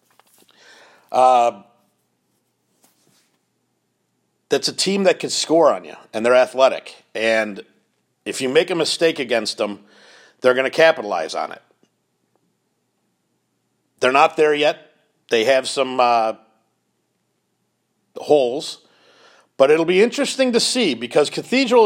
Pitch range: 120-170 Hz